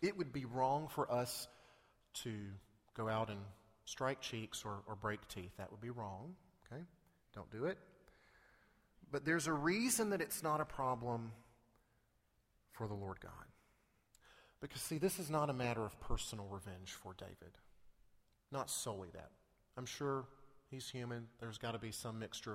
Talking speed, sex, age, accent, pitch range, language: 165 wpm, male, 40-59, American, 105-135 Hz, English